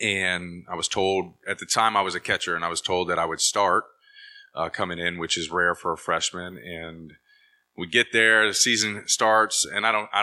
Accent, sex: American, male